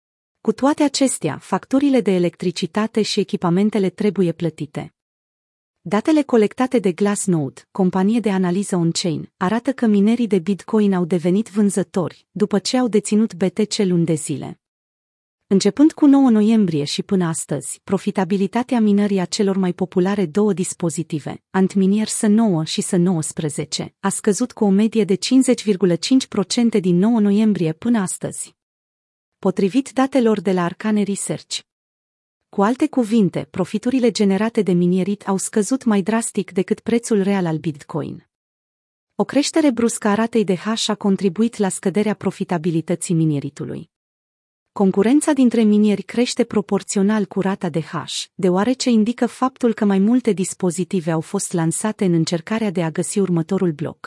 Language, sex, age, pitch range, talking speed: Romanian, female, 30-49, 180-220 Hz, 140 wpm